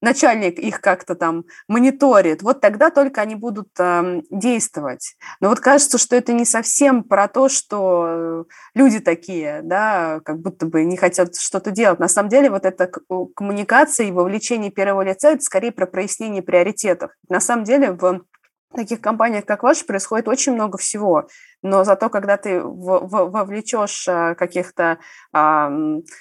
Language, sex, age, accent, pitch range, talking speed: Russian, female, 20-39, native, 175-235 Hz, 150 wpm